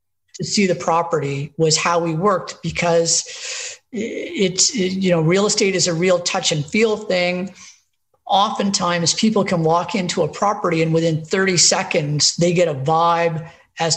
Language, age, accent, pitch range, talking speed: English, 50-69, American, 165-195 Hz, 155 wpm